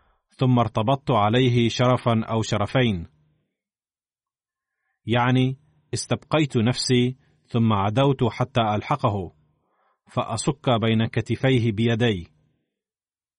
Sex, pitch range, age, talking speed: male, 115-135 Hz, 30-49, 75 wpm